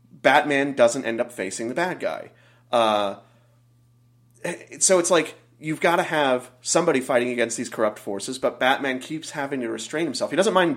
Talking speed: 180 wpm